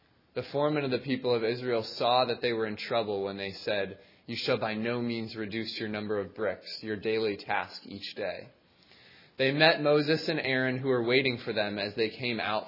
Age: 20-39